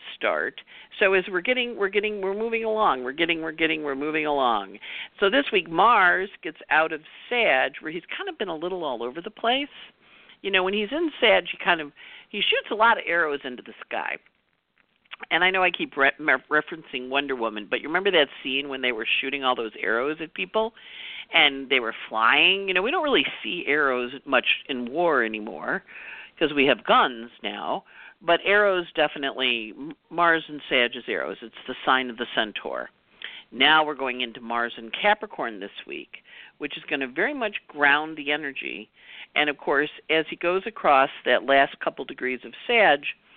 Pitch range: 135-200 Hz